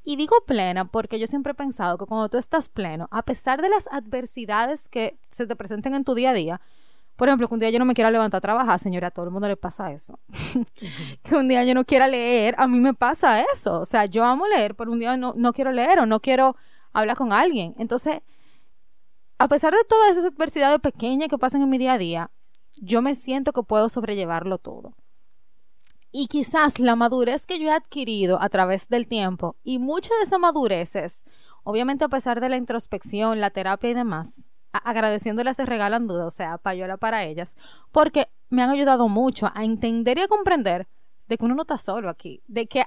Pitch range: 215-280 Hz